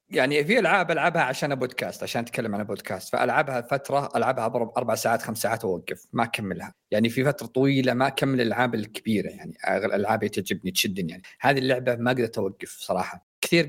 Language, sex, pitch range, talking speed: Arabic, male, 125-155 Hz, 180 wpm